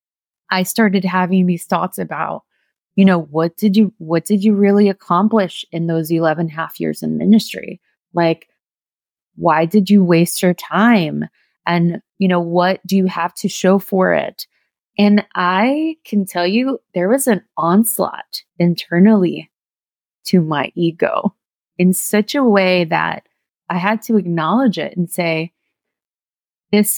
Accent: American